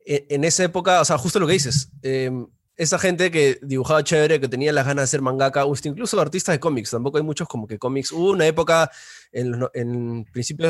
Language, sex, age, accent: Spanish, male, 20-39, Argentinian